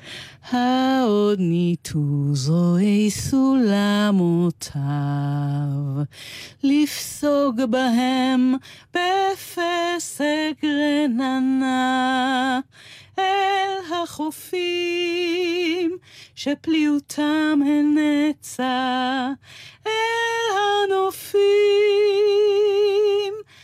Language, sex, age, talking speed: Hebrew, female, 40-59, 40 wpm